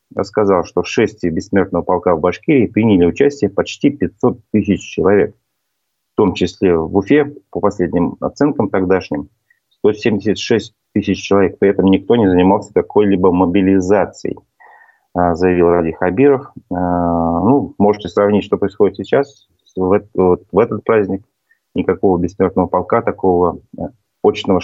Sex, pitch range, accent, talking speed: male, 90-110 Hz, native, 120 wpm